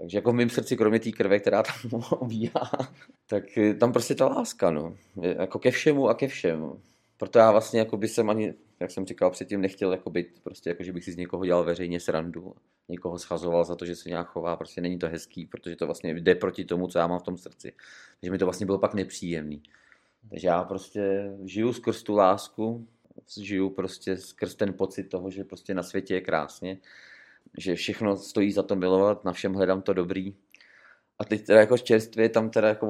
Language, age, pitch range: Czech, 30-49, 90-110 Hz